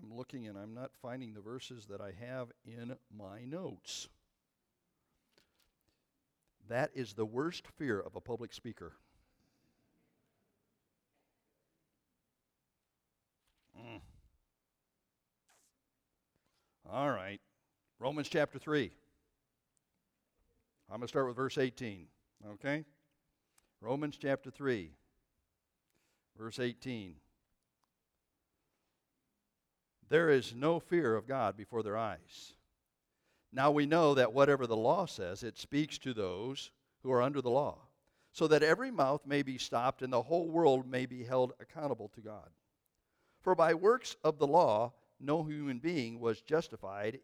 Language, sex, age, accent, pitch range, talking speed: English, male, 60-79, American, 105-145 Hz, 120 wpm